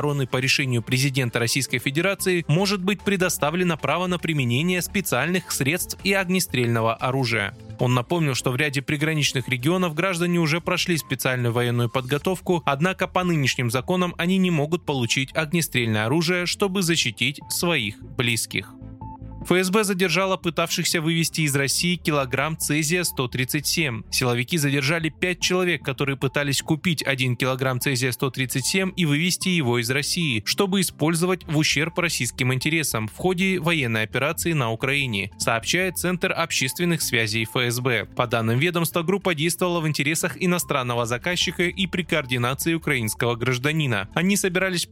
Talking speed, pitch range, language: 135 wpm, 125-175 Hz, Russian